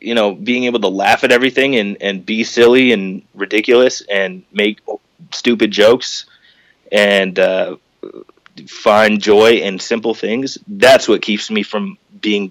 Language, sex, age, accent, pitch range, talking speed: English, male, 30-49, American, 105-125 Hz, 150 wpm